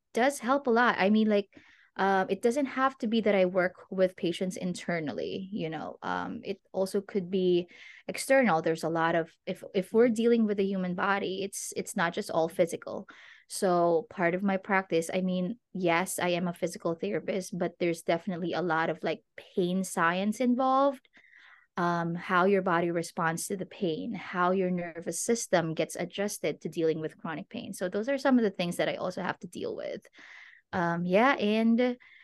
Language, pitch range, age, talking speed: English, 180-220 Hz, 20-39, 195 wpm